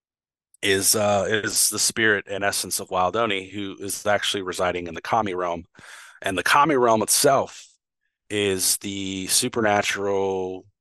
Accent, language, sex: American, English, male